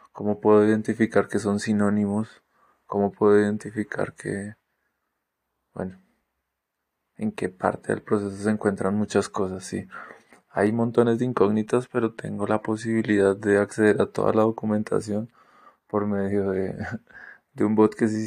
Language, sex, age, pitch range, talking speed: Spanish, male, 20-39, 100-110 Hz, 140 wpm